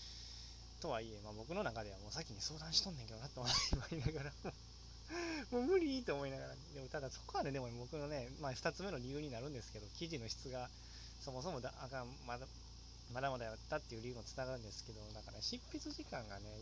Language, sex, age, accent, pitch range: Japanese, male, 20-39, native, 105-140 Hz